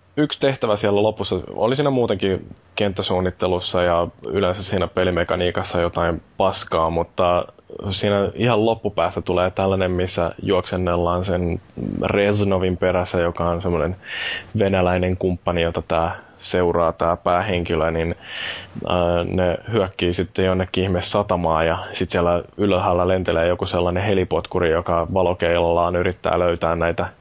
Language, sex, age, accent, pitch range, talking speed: Finnish, male, 20-39, native, 90-115 Hz, 120 wpm